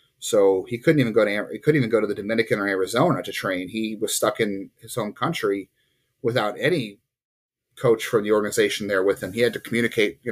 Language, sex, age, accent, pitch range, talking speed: English, male, 30-49, American, 105-130 Hz, 220 wpm